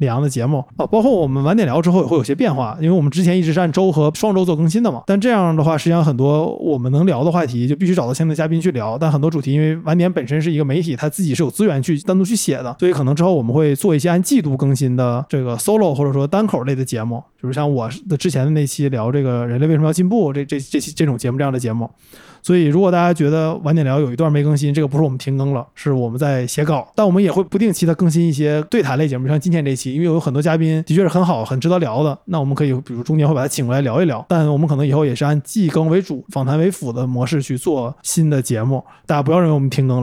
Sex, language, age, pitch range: male, Chinese, 20-39, 135-170 Hz